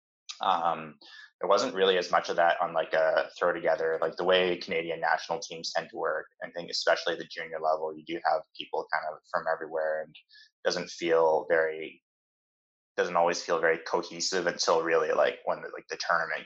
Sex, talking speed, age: male, 195 wpm, 20-39